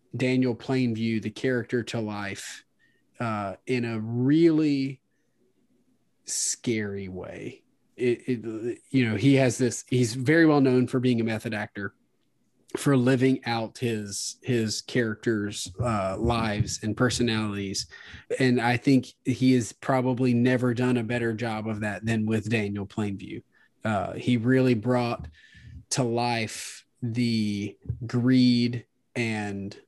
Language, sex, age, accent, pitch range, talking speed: English, male, 30-49, American, 110-130 Hz, 130 wpm